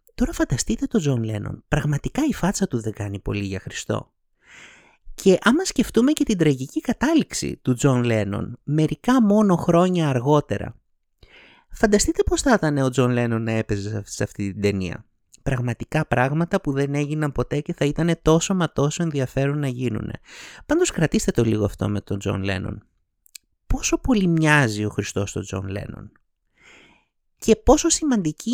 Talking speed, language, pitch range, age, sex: 160 wpm, Greek, 115-185 Hz, 30-49, male